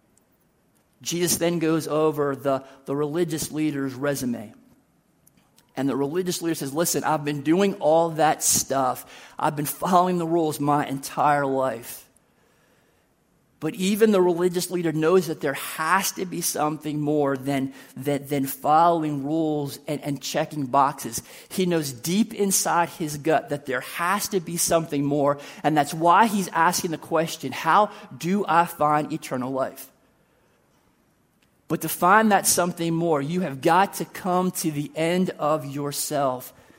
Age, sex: 40-59, male